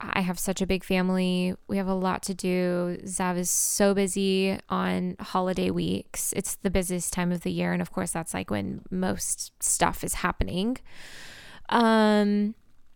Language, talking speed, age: English, 170 wpm, 20-39